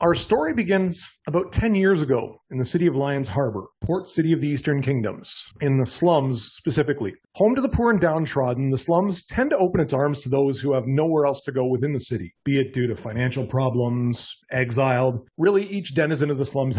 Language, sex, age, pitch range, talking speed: English, male, 30-49, 130-175 Hz, 215 wpm